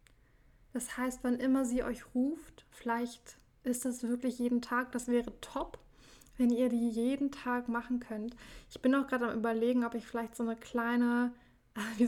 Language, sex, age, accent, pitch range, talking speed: German, female, 10-29, German, 225-245 Hz, 180 wpm